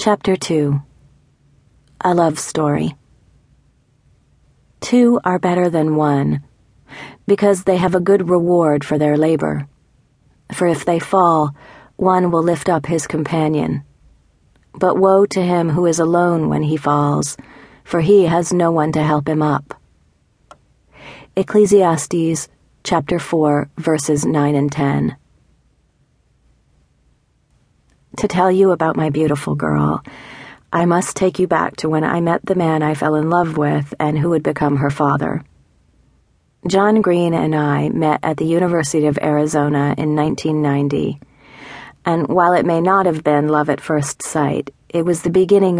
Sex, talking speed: female, 145 wpm